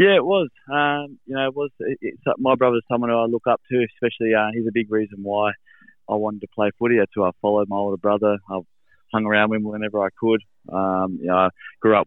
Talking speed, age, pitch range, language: 255 wpm, 20-39, 100-110 Hz, English